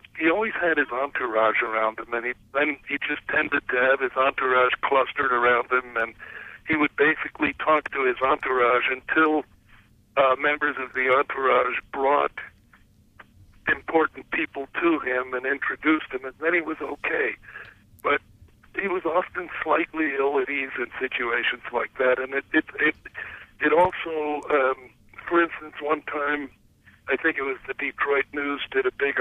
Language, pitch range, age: English, 125-145 Hz, 40-59